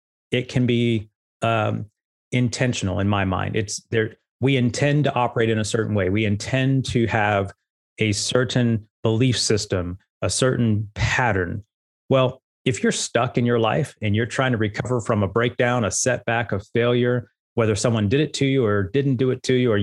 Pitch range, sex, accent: 110-130 Hz, male, American